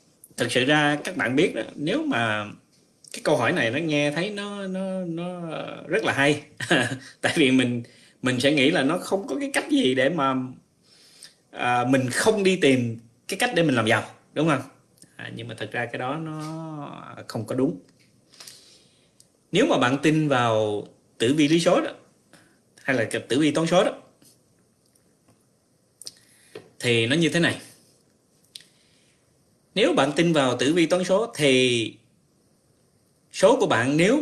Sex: male